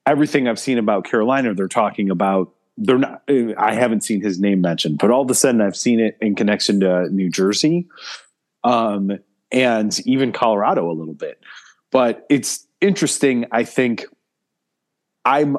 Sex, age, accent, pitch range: male, 30-49, American, 95-120 Hz